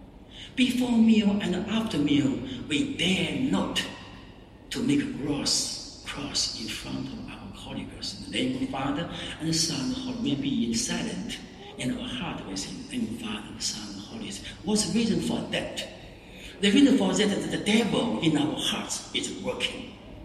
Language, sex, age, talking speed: English, male, 60-79, 165 wpm